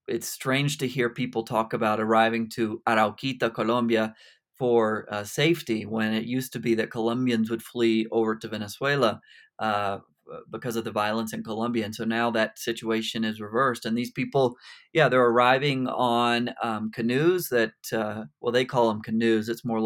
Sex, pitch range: male, 110-125 Hz